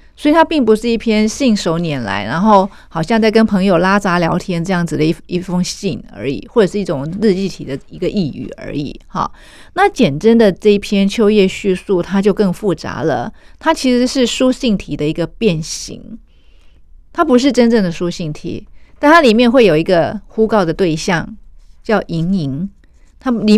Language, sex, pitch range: Chinese, female, 180-235 Hz